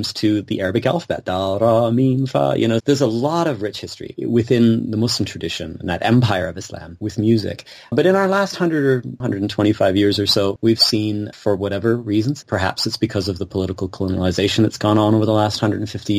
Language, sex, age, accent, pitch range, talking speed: English, male, 30-49, American, 95-115 Hz, 195 wpm